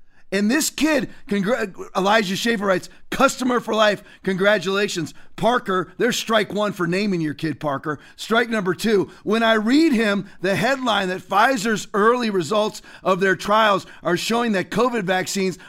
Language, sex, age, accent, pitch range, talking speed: English, male, 40-59, American, 185-245 Hz, 155 wpm